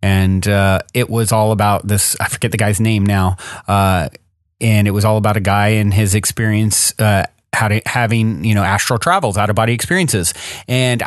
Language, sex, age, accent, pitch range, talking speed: English, male, 30-49, American, 100-125 Hz, 190 wpm